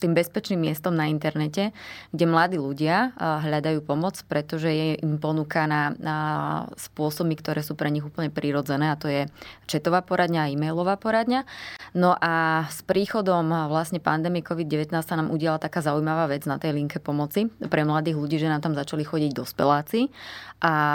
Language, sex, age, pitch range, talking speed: Slovak, female, 20-39, 155-180 Hz, 165 wpm